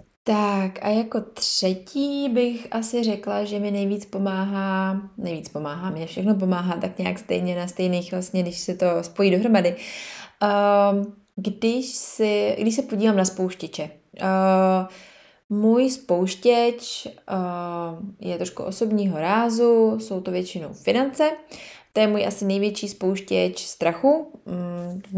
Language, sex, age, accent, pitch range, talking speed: Czech, female, 20-39, native, 180-215 Hz, 125 wpm